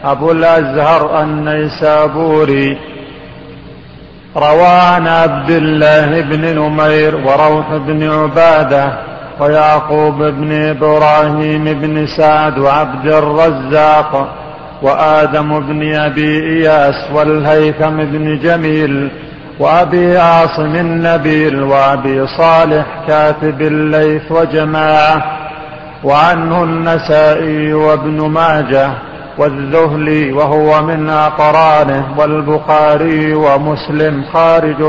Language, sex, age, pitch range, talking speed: Arabic, male, 50-69, 150-160 Hz, 75 wpm